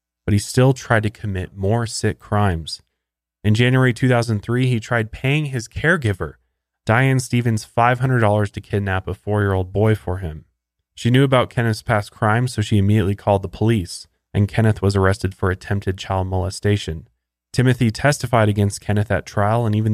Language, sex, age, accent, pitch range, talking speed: English, male, 20-39, American, 90-110 Hz, 165 wpm